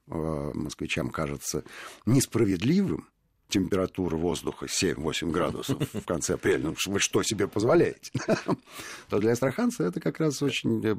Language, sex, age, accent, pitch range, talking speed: Russian, male, 50-69, native, 85-125 Hz, 120 wpm